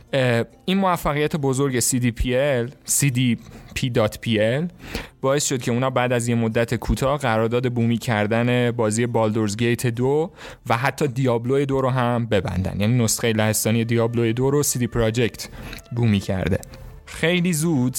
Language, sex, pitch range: Persian, male, 115-140 Hz